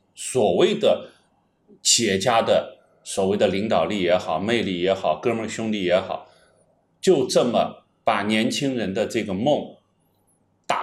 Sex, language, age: male, Chinese, 30-49